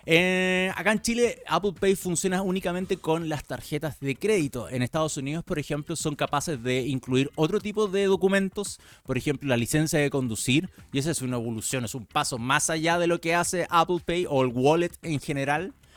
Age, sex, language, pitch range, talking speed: 30-49, male, Spanish, 130-170 Hz, 200 wpm